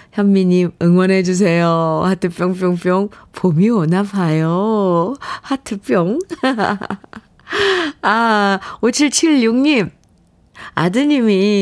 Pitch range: 165-210 Hz